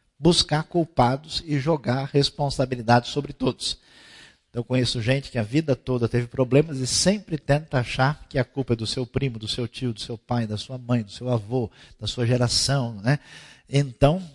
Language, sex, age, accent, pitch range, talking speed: Portuguese, male, 50-69, Brazilian, 120-170 Hz, 185 wpm